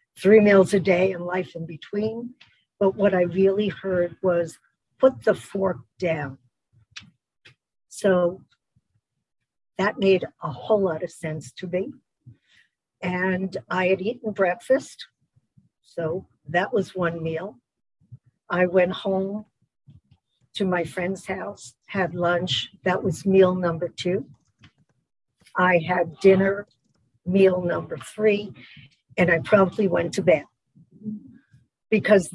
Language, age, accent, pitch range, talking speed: English, 60-79, American, 170-200 Hz, 120 wpm